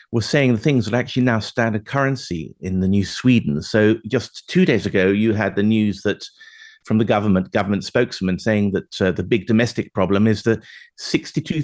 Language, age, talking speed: English, 50-69, 205 wpm